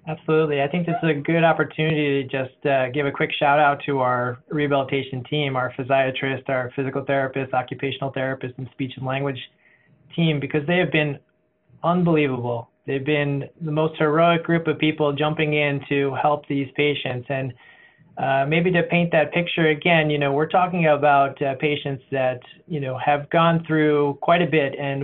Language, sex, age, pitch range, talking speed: English, male, 20-39, 140-160 Hz, 180 wpm